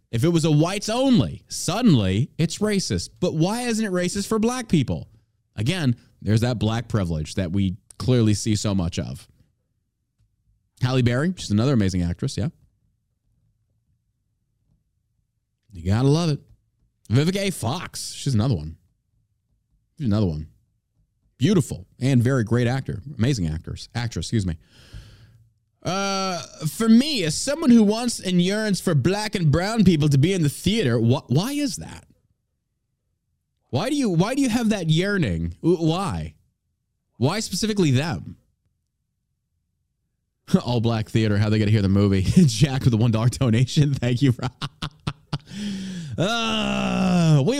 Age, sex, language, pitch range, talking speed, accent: 30-49, male, English, 110-160 Hz, 140 wpm, American